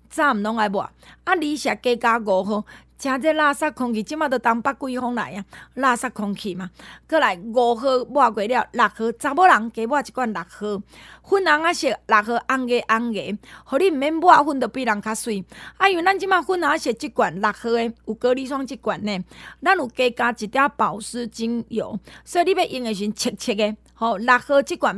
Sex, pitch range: female, 215-295 Hz